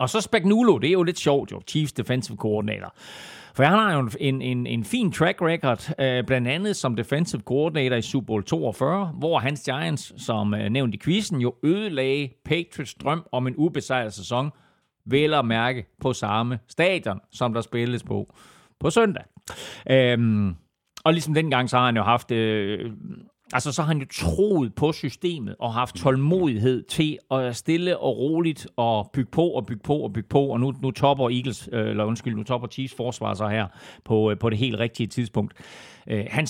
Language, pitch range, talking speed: Danish, 115-140 Hz, 190 wpm